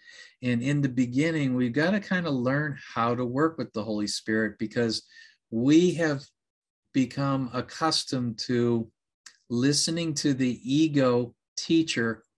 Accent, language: American, English